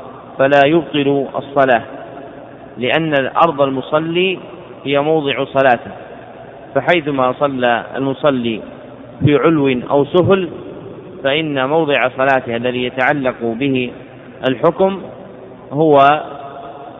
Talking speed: 85 wpm